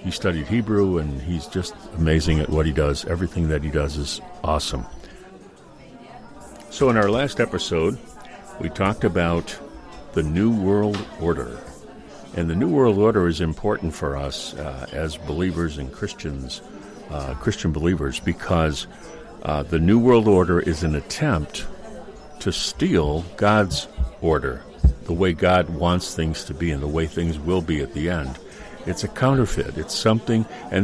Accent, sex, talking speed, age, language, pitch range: American, male, 160 wpm, 60-79, English, 80-105 Hz